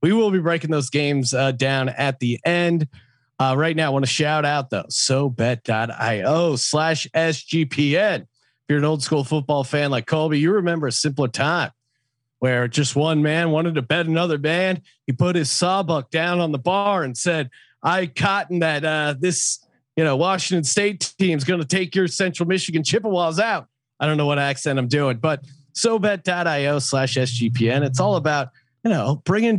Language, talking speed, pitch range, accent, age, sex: English, 185 wpm, 130-165 Hz, American, 40-59, male